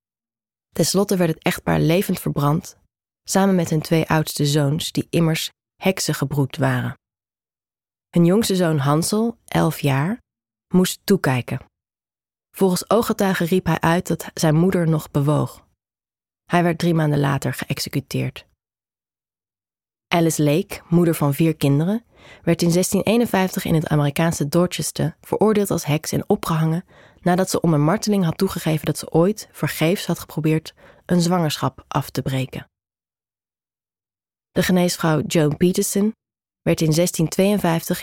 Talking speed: 135 wpm